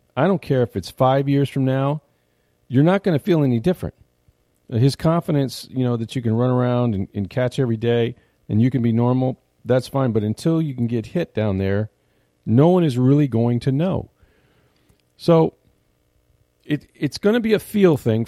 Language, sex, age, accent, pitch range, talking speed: English, male, 40-59, American, 95-135 Hz, 200 wpm